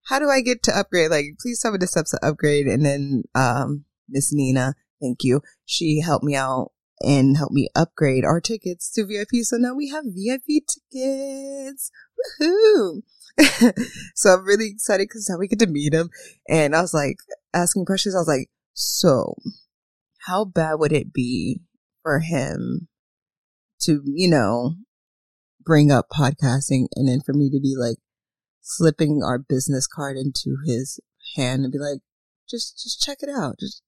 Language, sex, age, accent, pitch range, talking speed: English, female, 20-39, American, 140-220 Hz, 170 wpm